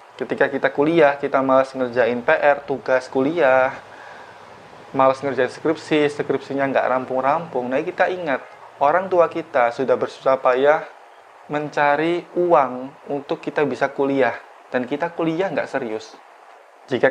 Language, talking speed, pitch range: Indonesian, 125 wpm, 130-160 Hz